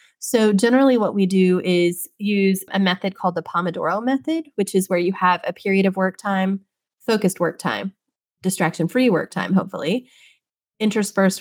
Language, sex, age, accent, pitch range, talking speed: English, female, 20-39, American, 180-220 Hz, 165 wpm